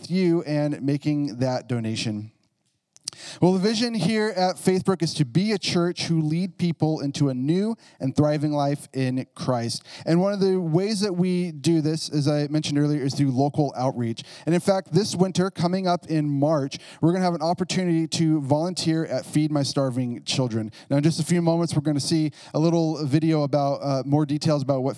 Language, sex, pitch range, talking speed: English, male, 140-165 Hz, 205 wpm